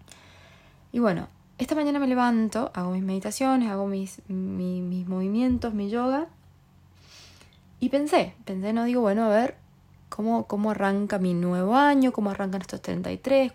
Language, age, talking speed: Spanish, 20-39, 140 wpm